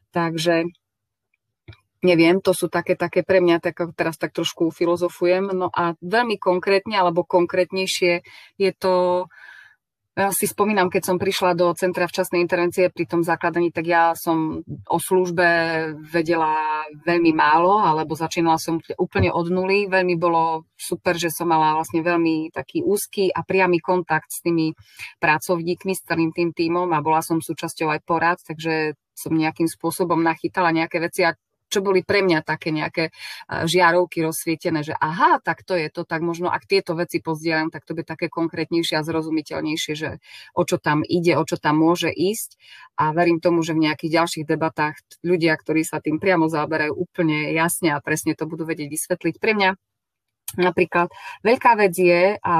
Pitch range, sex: 160-180 Hz, female